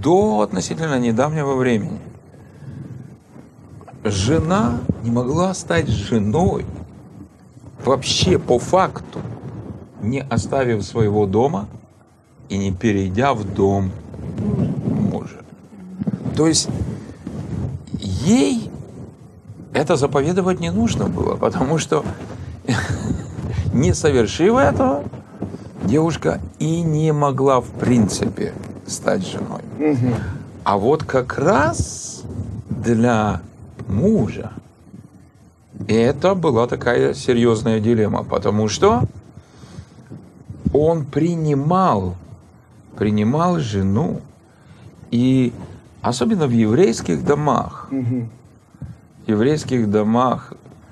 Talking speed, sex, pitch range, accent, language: 80 wpm, male, 105-140 Hz, native, Russian